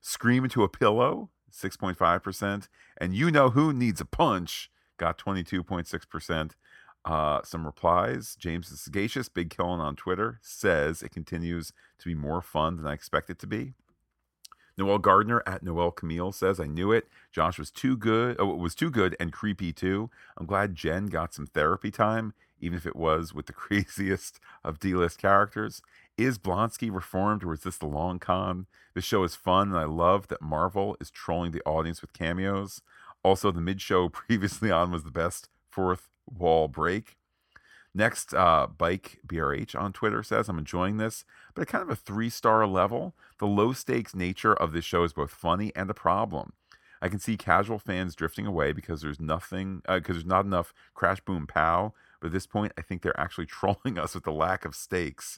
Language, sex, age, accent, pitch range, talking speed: English, male, 40-59, American, 85-100 Hz, 195 wpm